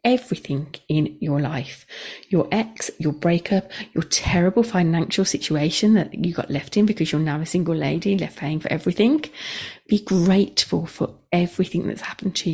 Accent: British